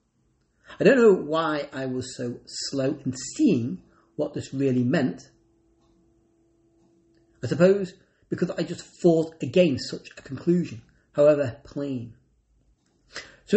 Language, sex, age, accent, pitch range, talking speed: English, male, 40-59, British, 120-180 Hz, 120 wpm